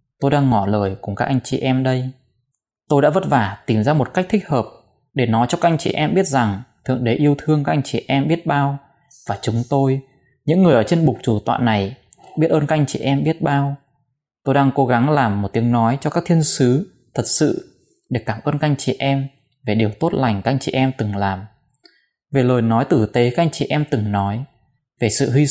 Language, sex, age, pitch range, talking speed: Vietnamese, male, 20-39, 115-150 Hz, 240 wpm